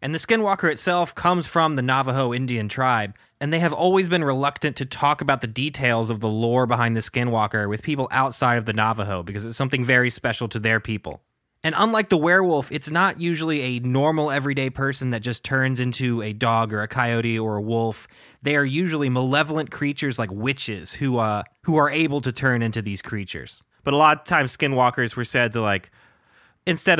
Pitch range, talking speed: 110-145 Hz, 205 wpm